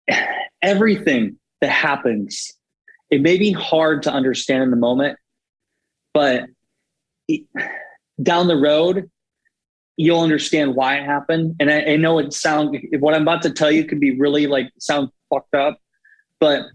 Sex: male